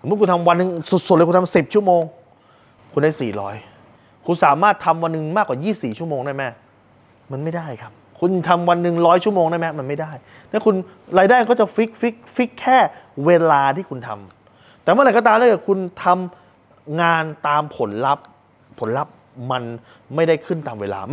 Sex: male